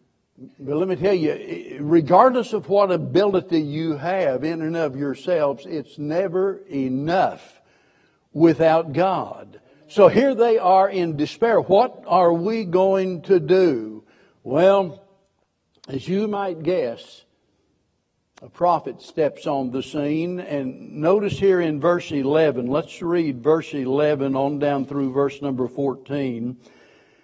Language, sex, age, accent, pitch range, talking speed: English, male, 60-79, American, 140-185 Hz, 130 wpm